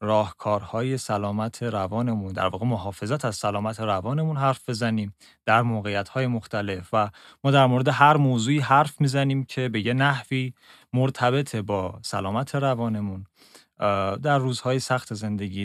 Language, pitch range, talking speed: Persian, 105-135 Hz, 130 wpm